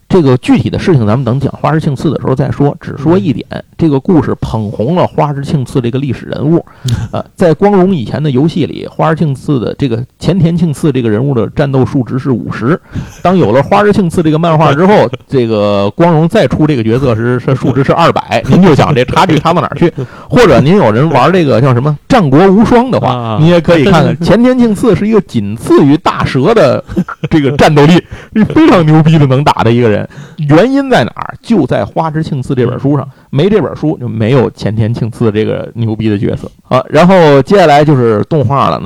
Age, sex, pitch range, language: 50-69, male, 120-160 Hz, Chinese